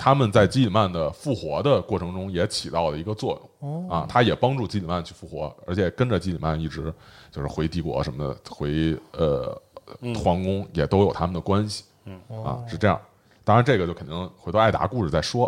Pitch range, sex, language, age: 90-130 Hz, male, Chinese, 30-49